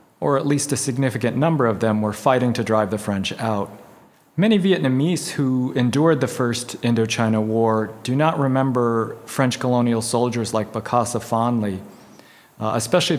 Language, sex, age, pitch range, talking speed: English, male, 40-59, 115-140 Hz, 155 wpm